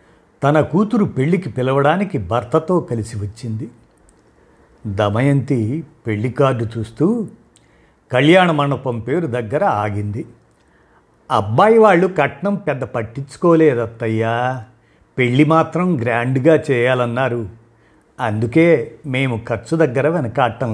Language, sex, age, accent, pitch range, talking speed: Telugu, male, 50-69, native, 115-165 Hz, 85 wpm